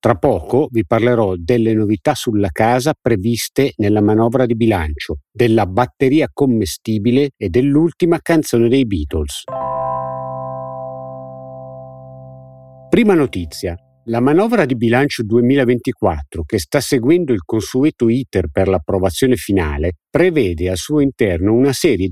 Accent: native